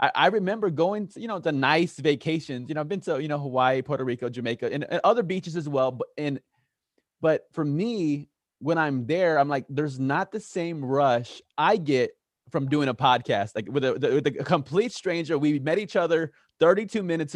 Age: 20-39